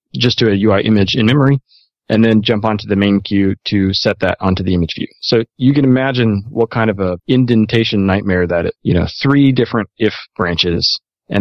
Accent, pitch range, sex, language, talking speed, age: American, 95-115 Hz, male, English, 205 wpm, 30-49